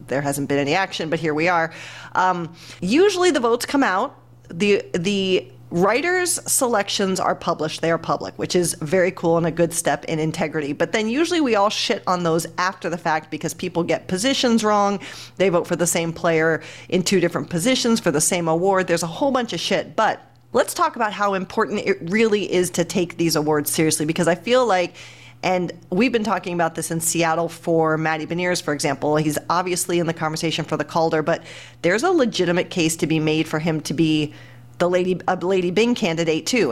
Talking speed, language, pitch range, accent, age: 210 wpm, English, 160-195 Hz, American, 40-59